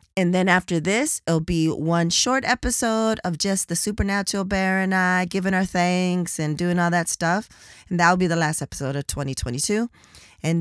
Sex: female